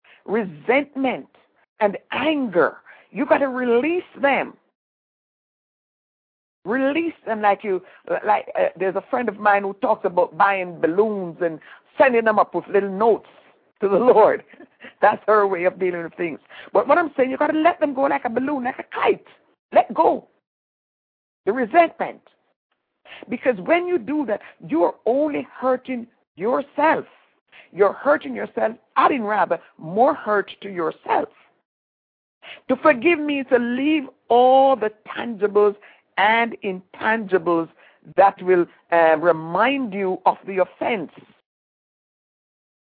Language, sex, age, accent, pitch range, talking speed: English, female, 60-79, American, 195-275 Hz, 135 wpm